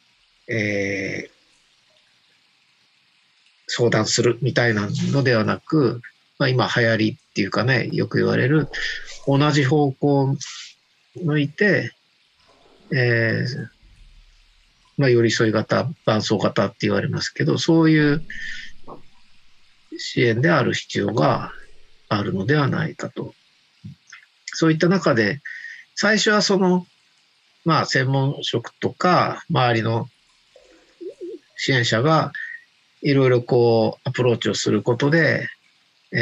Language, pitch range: Japanese, 115-160 Hz